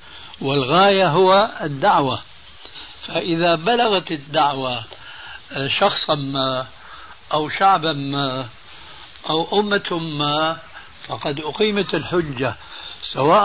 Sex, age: male, 60-79